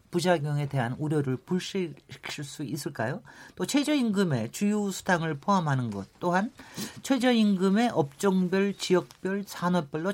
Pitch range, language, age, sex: 140-205 Hz, Korean, 40-59, male